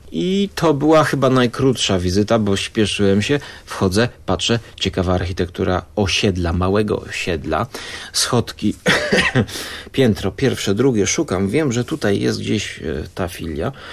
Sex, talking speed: male, 120 wpm